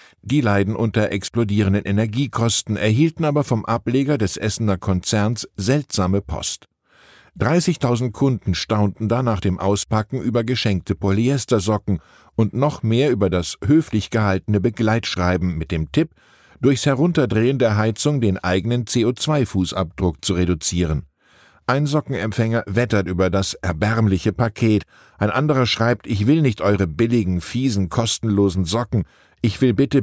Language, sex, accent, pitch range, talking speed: German, male, German, 95-125 Hz, 130 wpm